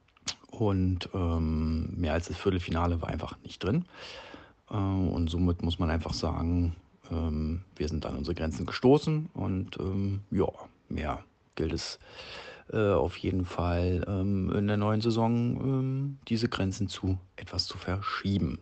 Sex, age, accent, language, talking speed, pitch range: male, 40-59, German, German, 150 wpm, 85-100 Hz